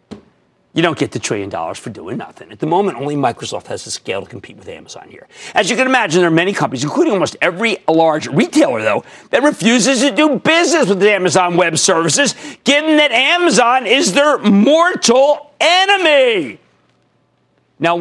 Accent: American